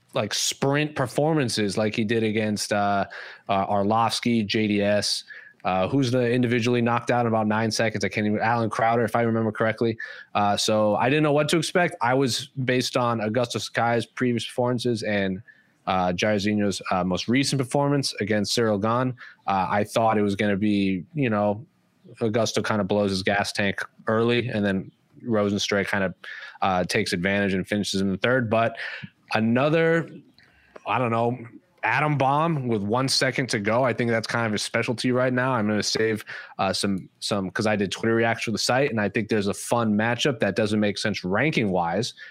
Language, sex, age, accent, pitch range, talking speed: English, male, 20-39, American, 105-125 Hz, 195 wpm